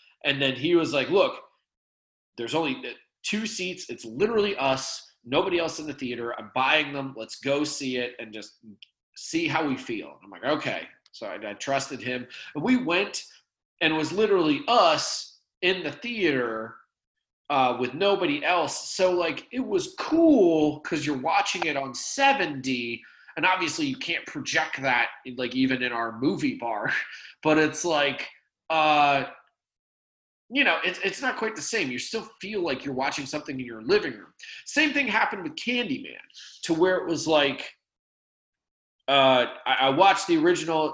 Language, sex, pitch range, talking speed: English, male, 125-185 Hz, 175 wpm